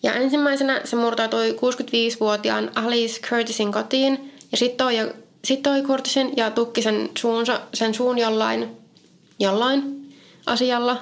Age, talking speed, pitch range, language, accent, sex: 20-39, 120 wpm, 215-260 Hz, Finnish, native, female